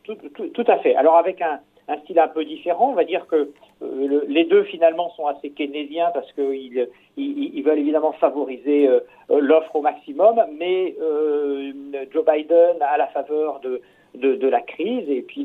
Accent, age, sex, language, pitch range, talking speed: French, 50-69, male, French, 135-215 Hz, 195 wpm